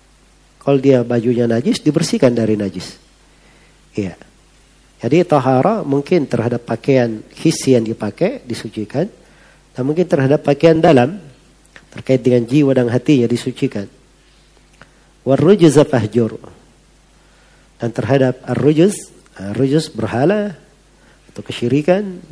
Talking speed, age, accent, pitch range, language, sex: 100 wpm, 40-59, native, 120-150 Hz, Indonesian, male